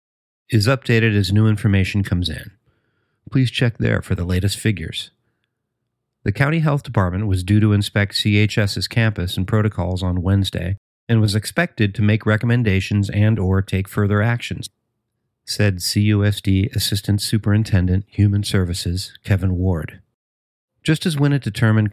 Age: 40-59